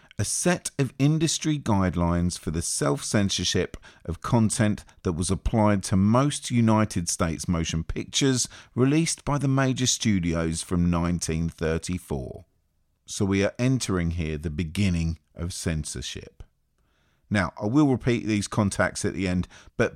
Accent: British